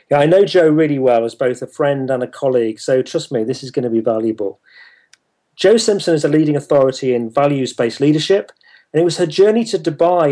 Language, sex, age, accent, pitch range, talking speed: English, male, 40-59, British, 130-160 Hz, 220 wpm